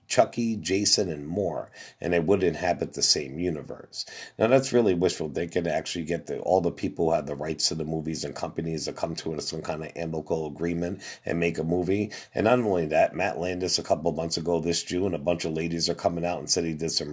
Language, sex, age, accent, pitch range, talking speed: English, male, 50-69, American, 85-105 Hz, 240 wpm